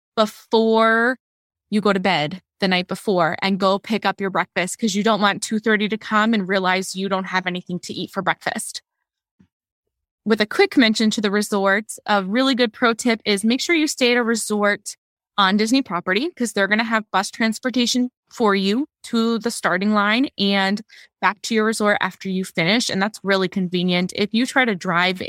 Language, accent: English, American